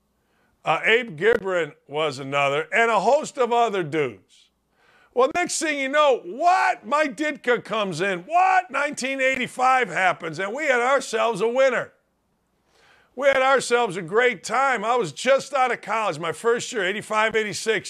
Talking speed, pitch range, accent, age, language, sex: 160 wpm, 200-265 Hz, American, 50-69, English, male